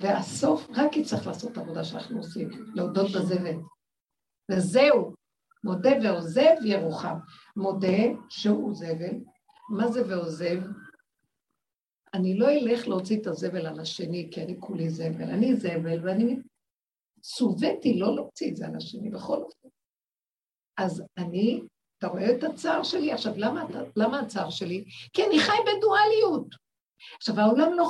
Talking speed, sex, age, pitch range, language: 135 wpm, female, 50-69, 190-265 Hz, Hebrew